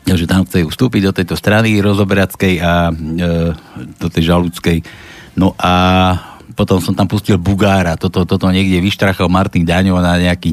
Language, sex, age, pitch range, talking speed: Slovak, male, 50-69, 90-105 Hz, 165 wpm